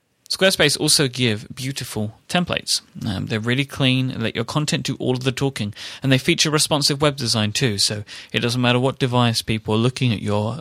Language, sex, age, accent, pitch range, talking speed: English, male, 30-49, British, 110-140 Hz, 200 wpm